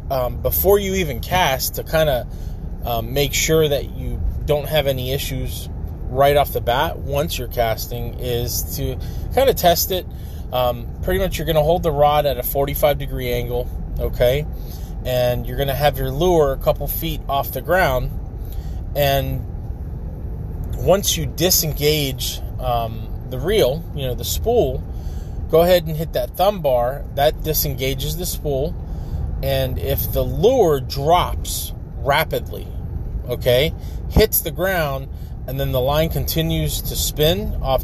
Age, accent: 20-39, American